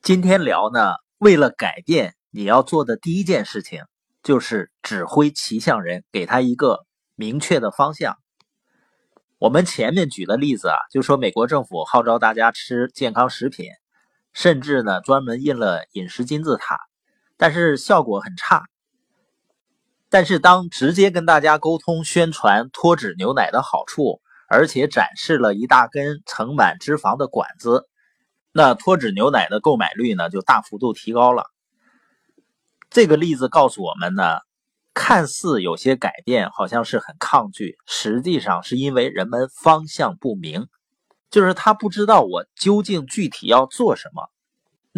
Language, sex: Chinese, male